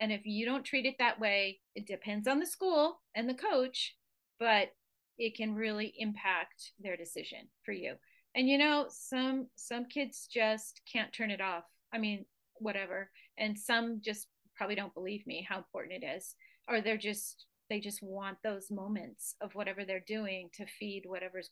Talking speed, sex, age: 180 wpm, female, 30-49